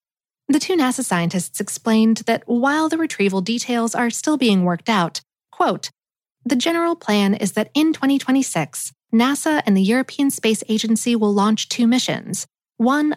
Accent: American